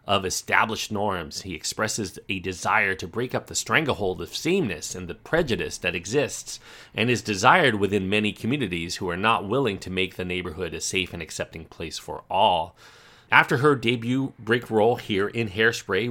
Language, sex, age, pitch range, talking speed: English, male, 40-59, 95-120 Hz, 180 wpm